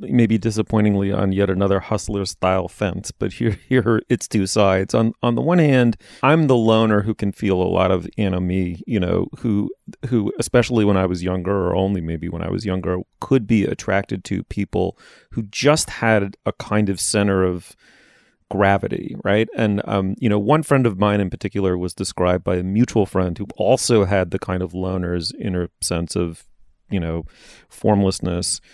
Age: 30-49